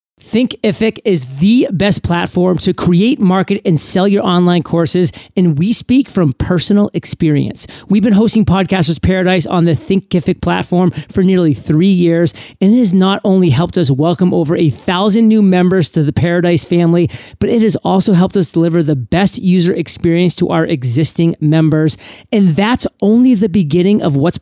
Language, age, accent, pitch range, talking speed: English, 40-59, American, 165-195 Hz, 175 wpm